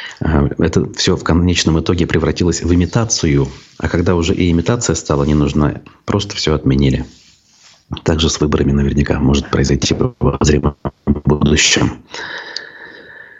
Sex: male